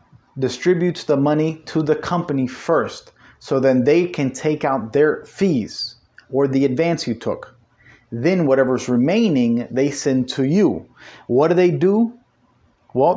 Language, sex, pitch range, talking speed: English, male, 120-160 Hz, 145 wpm